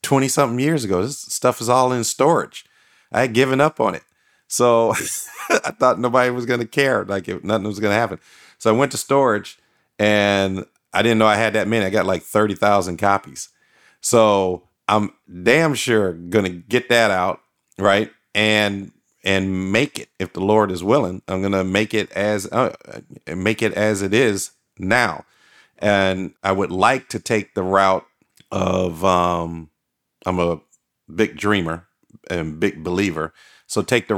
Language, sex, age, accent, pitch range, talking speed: English, male, 40-59, American, 90-110 Hz, 175 wpm